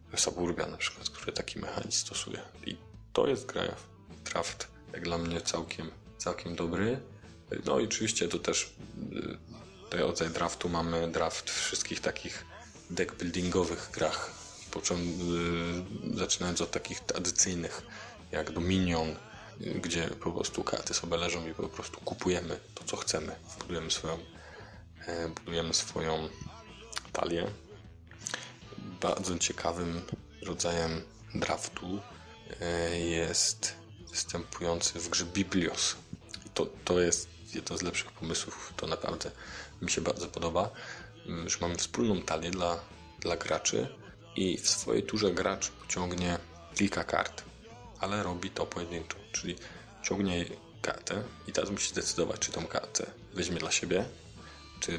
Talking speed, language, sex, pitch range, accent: 125 wpm, Polish, male, 85-90 Hz, native